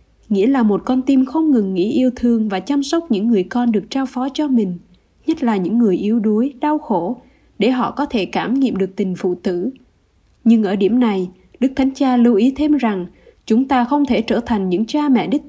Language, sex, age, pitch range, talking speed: Vietnamese, female, 20-39, 210-265 Hz, 235 wpm